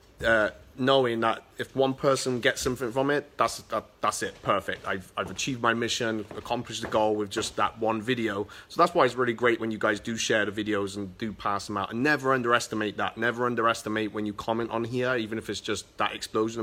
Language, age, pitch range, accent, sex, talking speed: English, 30-49, 110-135 Hz, British, male, 225 wpm